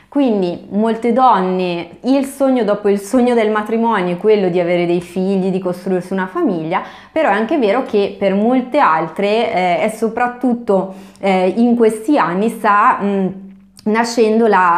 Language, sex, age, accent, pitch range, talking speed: Italian, female, 20-39, native, 190-240 Hz, 150 wpm